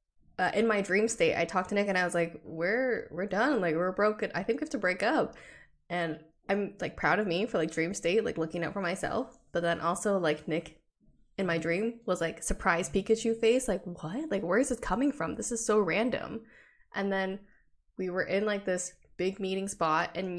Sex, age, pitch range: female, 10-29, 180-220 Hz